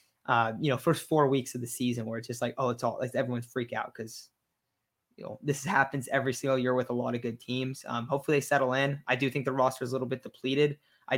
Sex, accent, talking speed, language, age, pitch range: male, American, 275 wpm, English, 20-39, 125-145 Hz